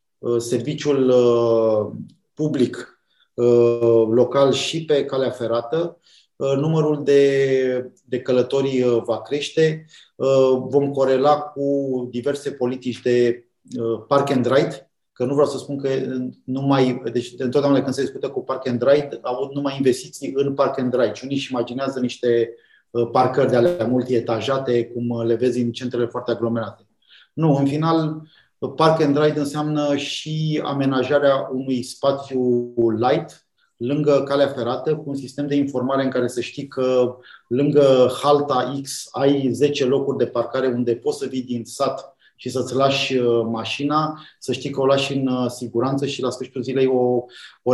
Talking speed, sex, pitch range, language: 150 wpm, male, 120-140 Hz, Romanian